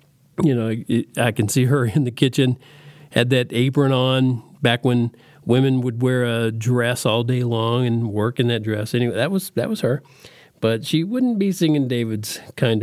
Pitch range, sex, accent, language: 115-150 Hz, male, American, English